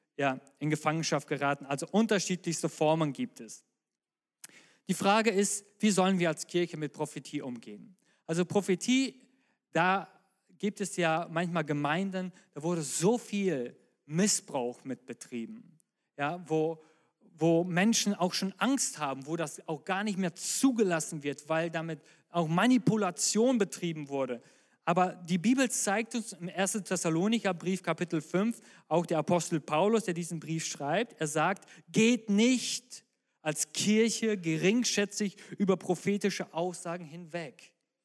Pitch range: 160-210 Hz